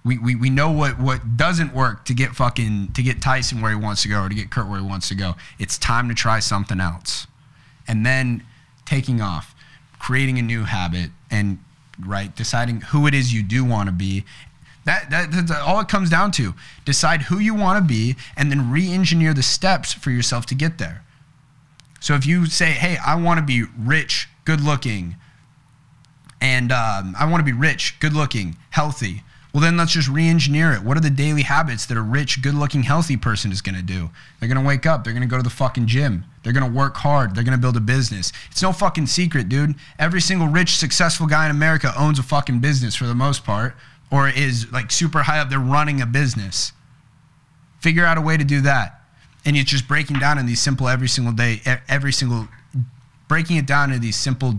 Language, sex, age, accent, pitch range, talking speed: English, male, 30-49, American, 120-150 Hz, 215 wpm